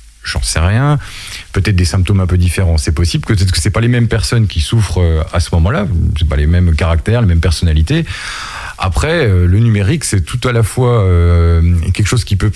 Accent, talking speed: French, 205 wpm